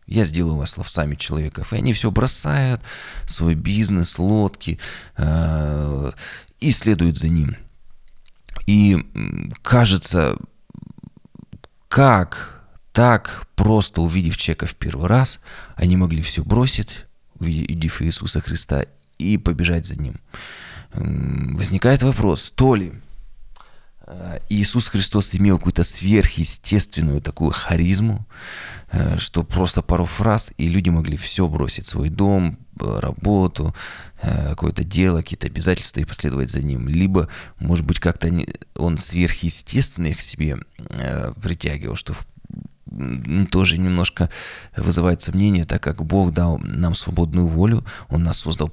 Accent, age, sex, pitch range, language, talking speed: native, 20-39, male, 80-100 Hz, Russian, 120 wpm